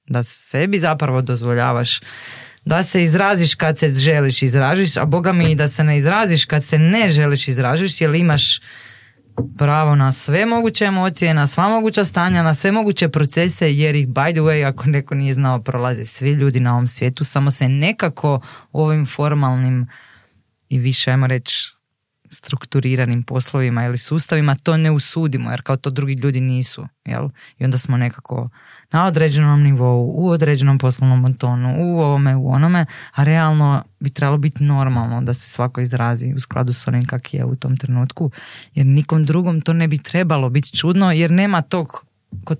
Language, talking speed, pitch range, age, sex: Croatian, 175 wpm, 130-160 Hz, 20-39, female